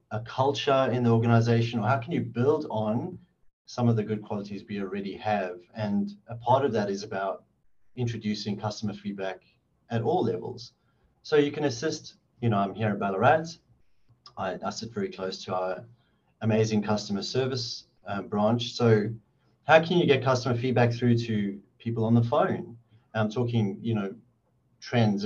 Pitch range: 105-125 Hz